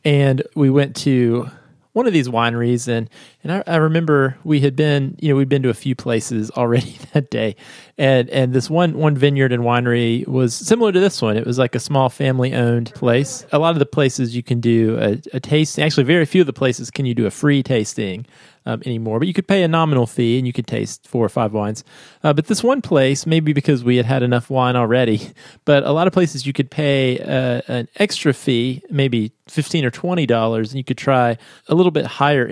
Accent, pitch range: American, 120-145 Hz